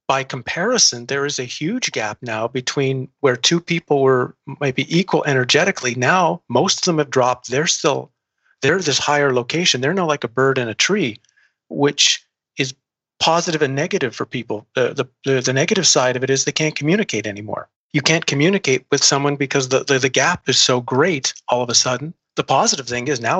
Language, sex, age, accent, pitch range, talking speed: English, male, 40-59, American, 130-155 Hz, 195 wpm